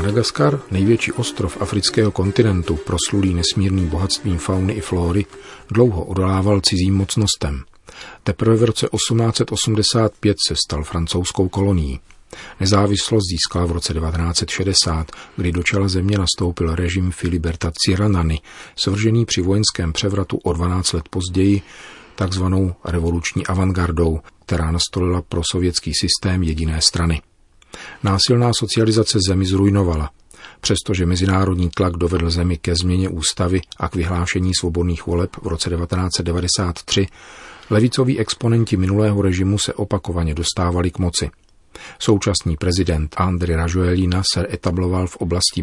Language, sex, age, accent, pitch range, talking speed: Czech, male, 40-59, native, 85-100 Hz, 120 wpm